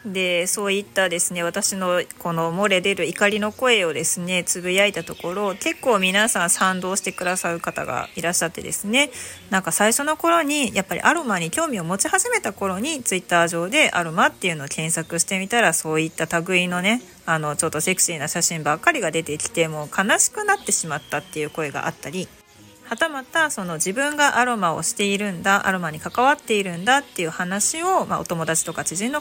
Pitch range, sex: 170-240 Hz, female